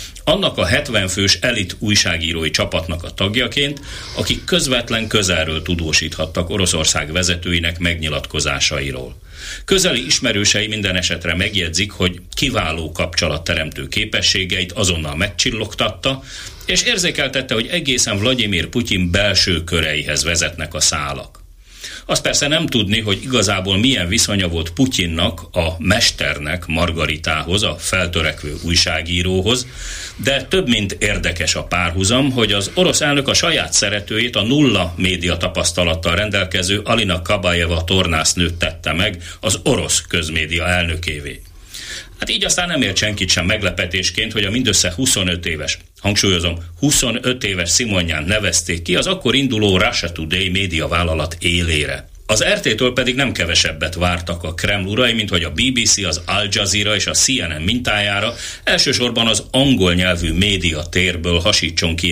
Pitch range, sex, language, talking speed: 85-105 Hz, male, Hungarian, 130 wpm